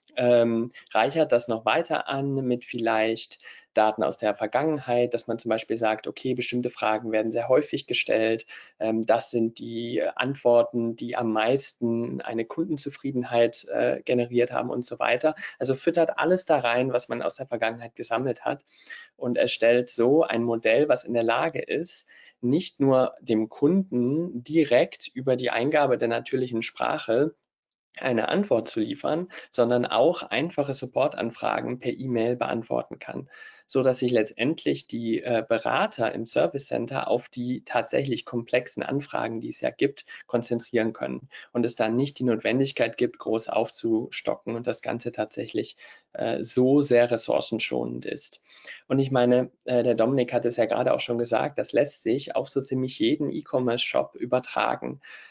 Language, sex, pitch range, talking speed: German, male, 115-135 Hz, 155 wpm